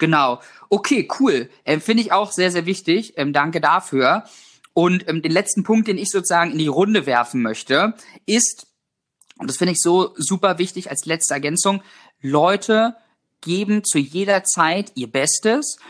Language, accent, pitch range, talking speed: German, German, 160-205 Hz, 165 wpm